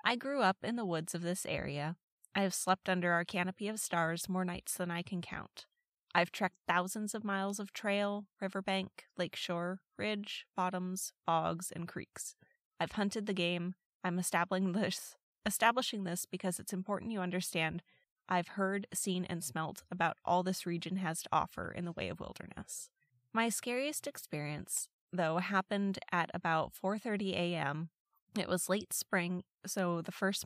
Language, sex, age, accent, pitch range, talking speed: English, female, 20-39, American, 170-200 Hz, 165 wpm